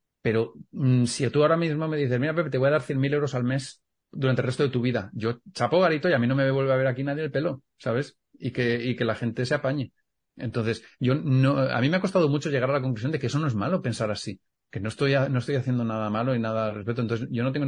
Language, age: Spanish, 40-59